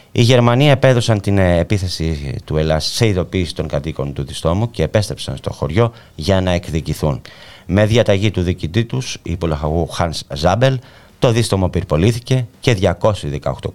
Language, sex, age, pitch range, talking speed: Greek, male, 30-49, 80-110 Hz, 140 wpm